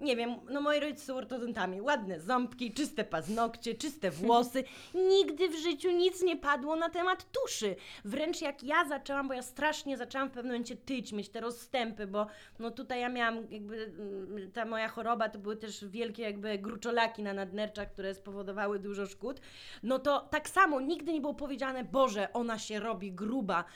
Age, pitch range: 20-39, 230-300 Hz